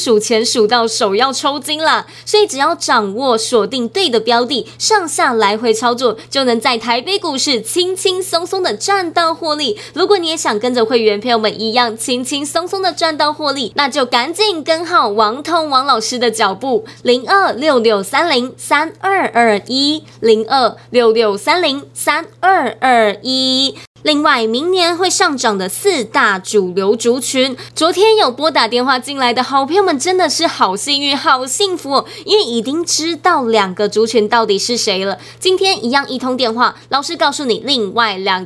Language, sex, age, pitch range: Chinese, female, 20-39, 230-335 Hz